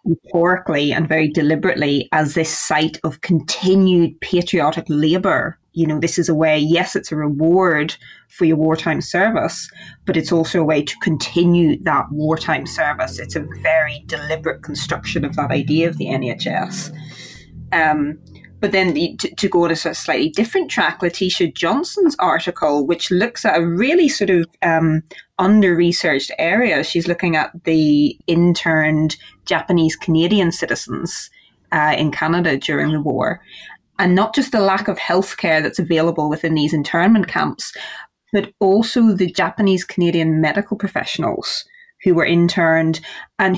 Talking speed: 150 wpm